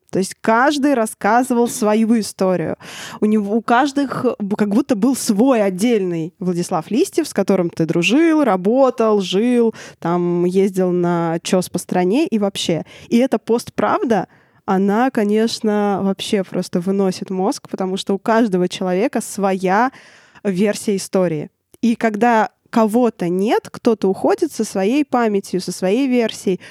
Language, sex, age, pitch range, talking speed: Russian, female, 20-39, 195-235 Hz, 135 wpm